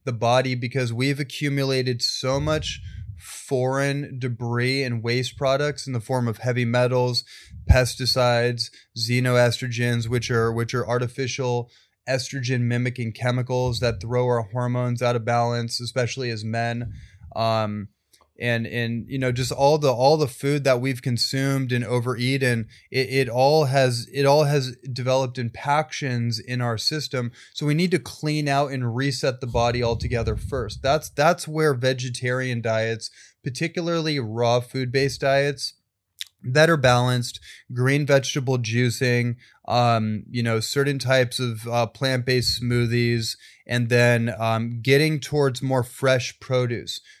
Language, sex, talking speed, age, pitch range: English, male, 140 wpm, 20-39, 120-135 Hz